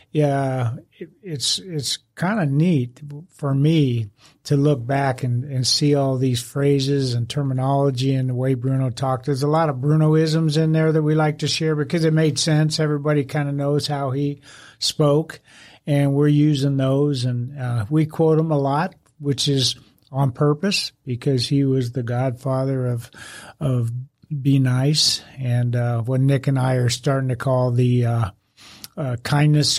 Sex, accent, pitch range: male, American, 130-150 Hz